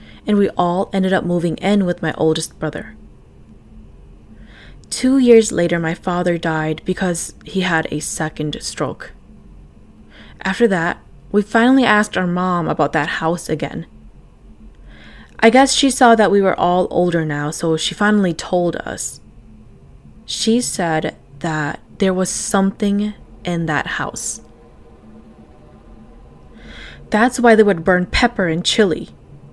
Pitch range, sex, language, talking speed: 160-210 Hz, female, English, 135 wpm